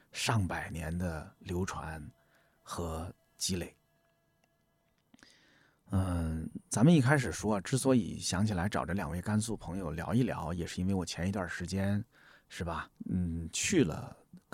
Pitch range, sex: 95-130 Hz, male